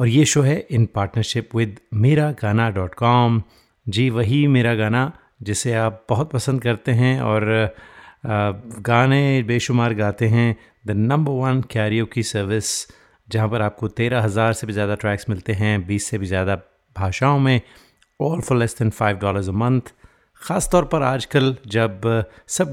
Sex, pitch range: male, 110-130 Hz